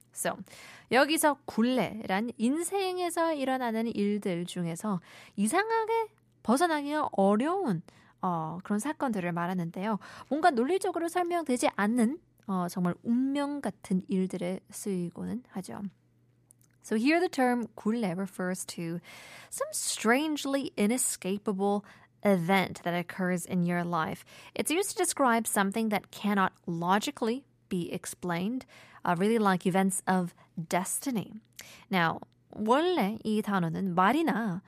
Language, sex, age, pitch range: Korean, female, 20-39, 185-270 Hz